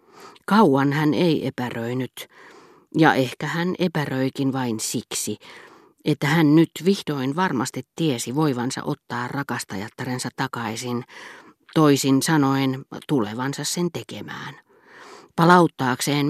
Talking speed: 95 wpm